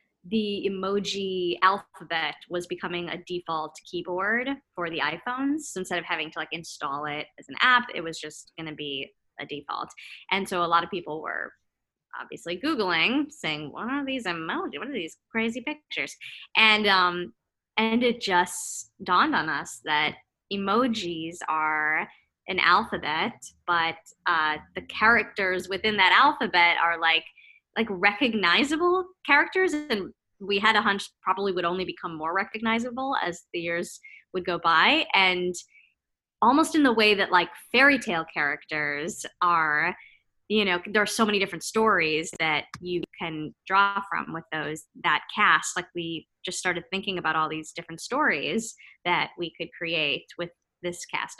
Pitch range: 165-225 Hz